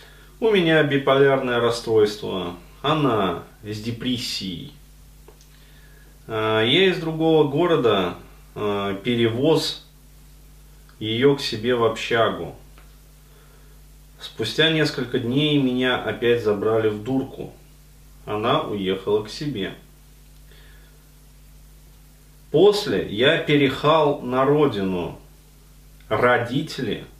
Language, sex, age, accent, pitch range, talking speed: Russian, male, 30-49, native, 115-145 Hz, 75 wpm